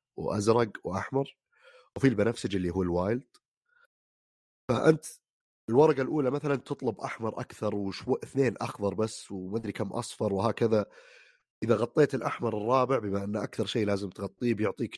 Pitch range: 100-130 Hz